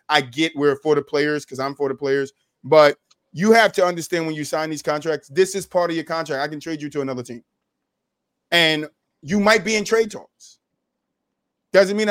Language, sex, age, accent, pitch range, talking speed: English, male, 30-49, American, 140-175 Hz, 215 wpm